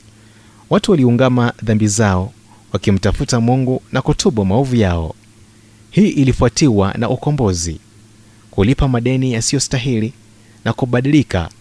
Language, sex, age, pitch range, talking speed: Swahili, male, 30-49, 105-130 Hz, 100 wpm